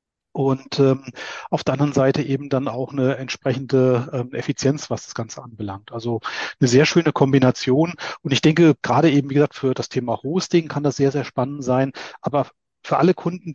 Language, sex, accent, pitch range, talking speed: German, male, German, 130-150 Hz, 190 wpm